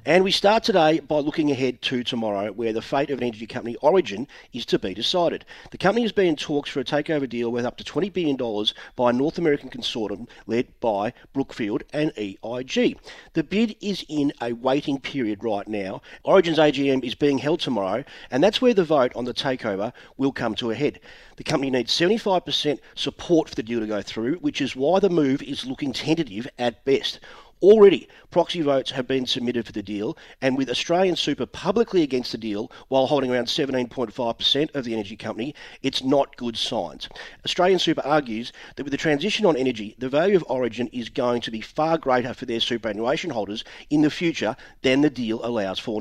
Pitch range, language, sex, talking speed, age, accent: 120-160 Hz, English, male, 200 wpm, 40-59, Australian